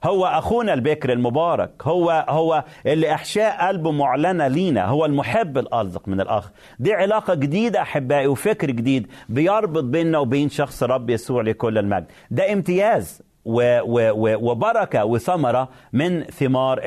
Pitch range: 130-190 Hz